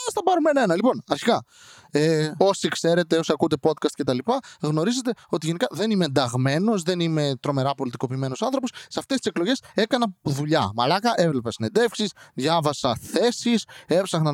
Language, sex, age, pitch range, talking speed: Greek, male, 20-39, 135-200 Hz, 160 wpm